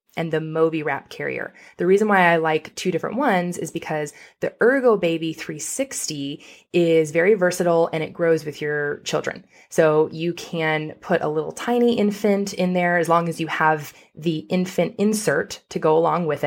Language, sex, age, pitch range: English, female, 20-39, 155-190 Hz